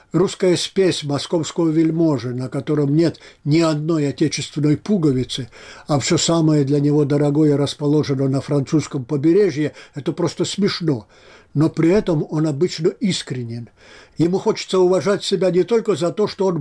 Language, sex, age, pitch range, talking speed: Russian, male, 60-79, 140-185 Hz, 145 wpm